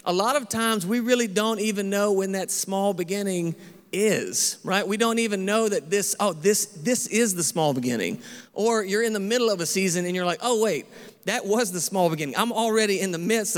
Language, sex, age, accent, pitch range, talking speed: English, male, 40-59, American, 175-210 Hz, 225 wpm